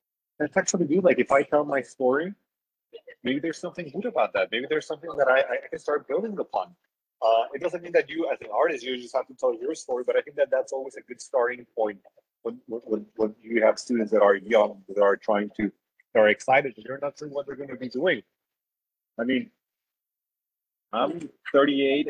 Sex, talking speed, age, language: male, 220 wpm, 30-49, English